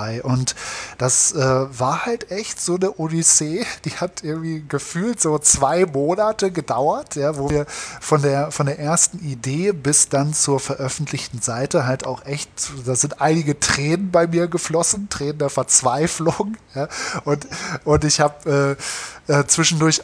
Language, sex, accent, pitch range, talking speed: German, male, German, 125-150 Hz, 155 wpm